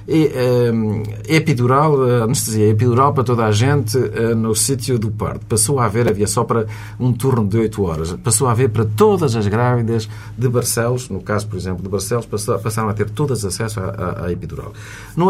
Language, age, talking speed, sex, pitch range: Portuguese, 50-69, 185 wpm, male, 110-160 Hz